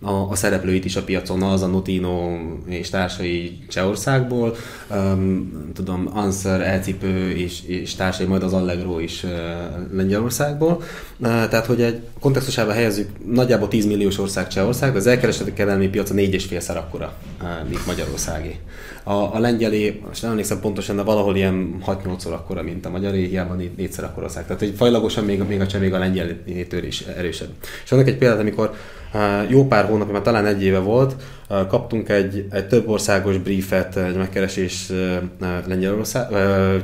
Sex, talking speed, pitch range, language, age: male, 160 wpm, 95-110 Hz, Hungarian, 20-39